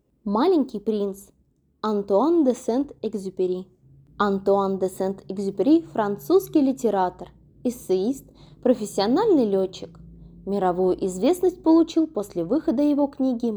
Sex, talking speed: female, 90 wpm